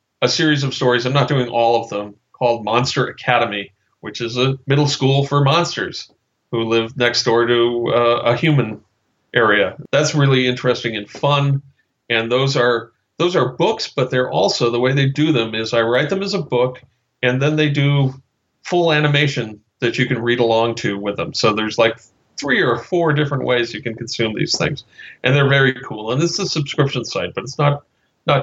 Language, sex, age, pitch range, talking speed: English, male, 40-59, 115-140 Hz, 200 wpm